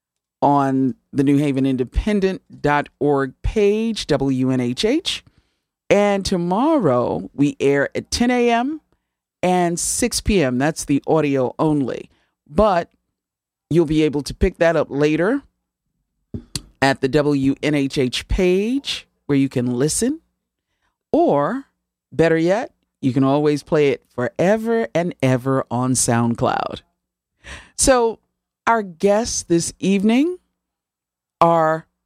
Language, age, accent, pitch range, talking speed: English, 40-59, American, 135-200 Hz, 105 wpm